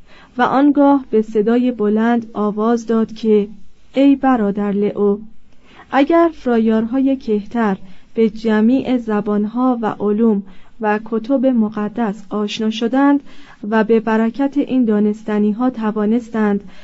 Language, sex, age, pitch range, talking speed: Persian, female, 30-49, 210-255 Hz, 105 wpm